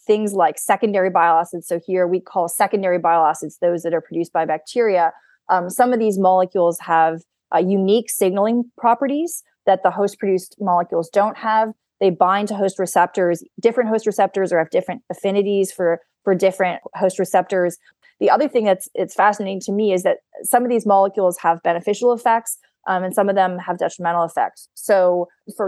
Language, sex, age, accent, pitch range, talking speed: English, female, 20-39, American, 175-205 Hz, 180 wpm